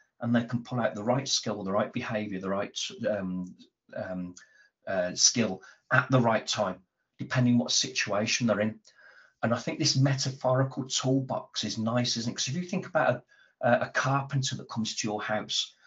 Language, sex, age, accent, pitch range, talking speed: English, male, 40-59, British, 105-130 Hz, 185 wpm